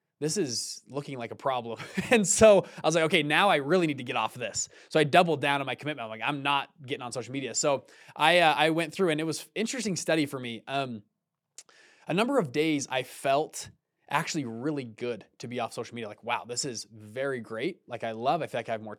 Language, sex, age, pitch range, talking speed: English, male, 20-39, 130-170 Hz, 250 wpm